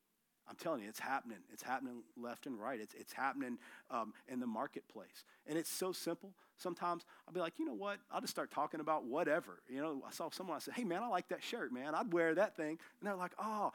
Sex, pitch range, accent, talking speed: male, 160-250 Hz, American, 245 wpm